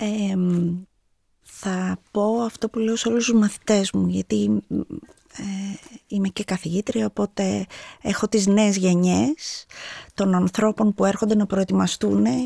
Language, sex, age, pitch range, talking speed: Greek, female, 30-49, 175-215 Hz, 120 wpm